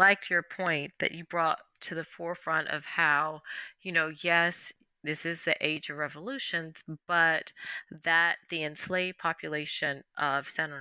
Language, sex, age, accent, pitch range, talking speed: English, female, 30-49, American, 150-180 Hz, 150 wpm